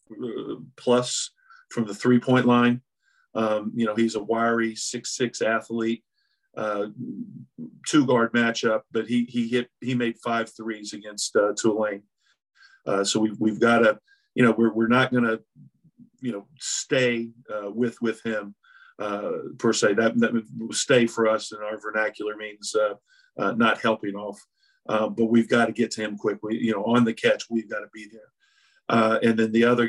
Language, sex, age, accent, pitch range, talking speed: English, male, 50-69, American, 110-120 Hz, 185 wpm